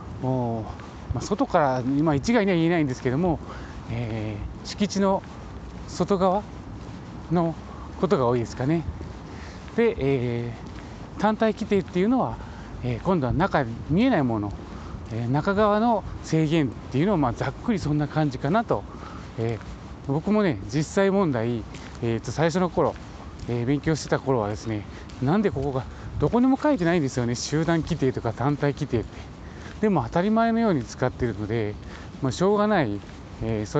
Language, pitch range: Japanese, 110-160 Hz